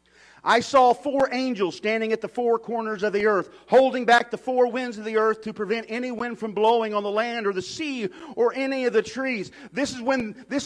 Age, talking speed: 40-59, 230 wpm